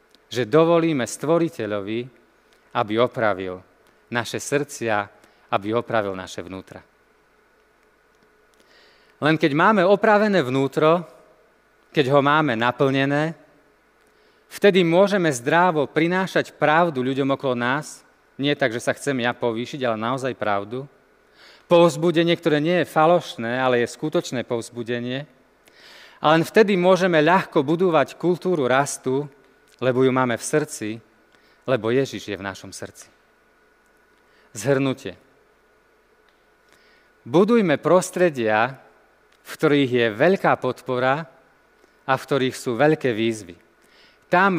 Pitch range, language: 120-165 Hz, Slovak